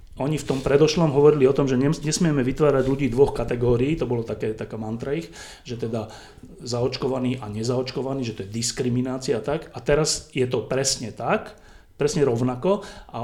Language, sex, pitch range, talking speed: Slovak, male, 120-150 Hz, 170 wpm